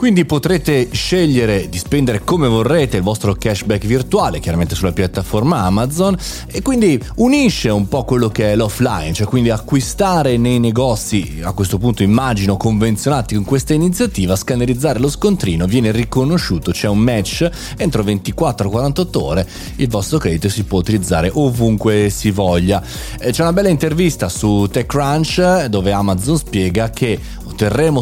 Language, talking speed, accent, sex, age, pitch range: Italian, 145 wpm, native, male, 30-49, 100-135 Hz